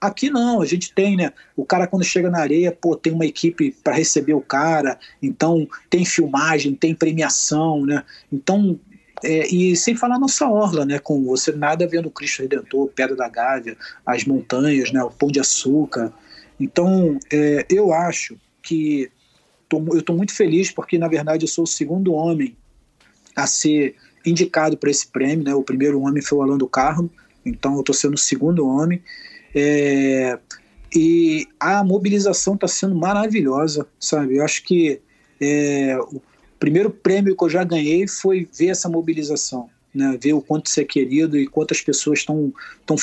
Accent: Brazilian